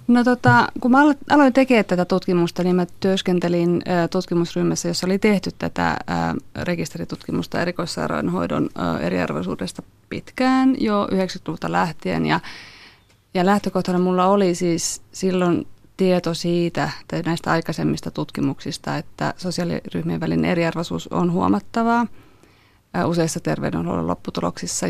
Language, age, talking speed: Finnish, 30-49, 110 wpm